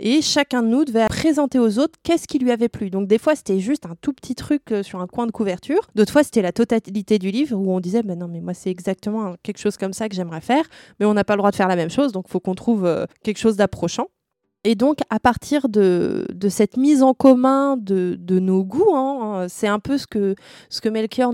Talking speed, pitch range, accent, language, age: 260 wpm, 195-255 Hz, French, French, 20-39